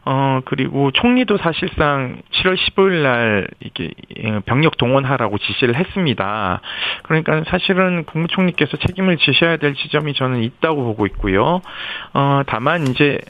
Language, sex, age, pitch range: Korean, male, 40-59, 110-165 Hz